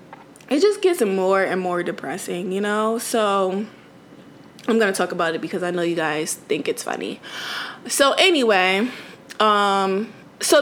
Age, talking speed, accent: 20-39, 160 wpm, American